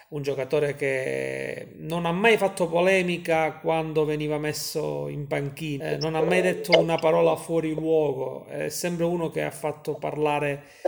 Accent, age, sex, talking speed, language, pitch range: native, 30-49, male, 155 wpm, Italian, 145-170 Hz